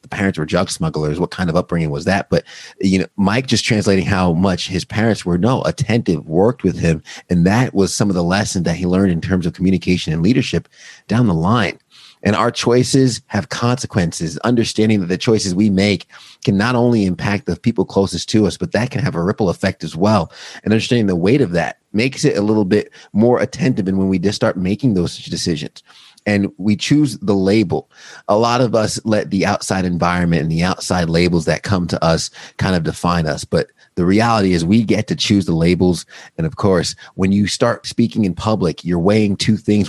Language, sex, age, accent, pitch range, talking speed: English, male, 30-49, American, 90-110 Hz, 215 wpm